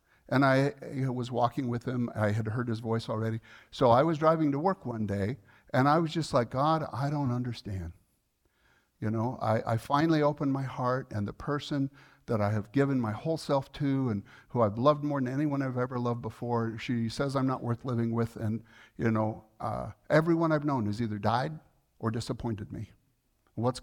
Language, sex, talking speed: English, male, 200 wpm